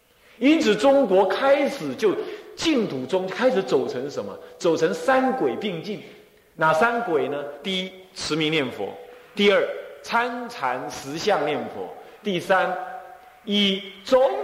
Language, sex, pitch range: Chinese, male, 180-275 Hz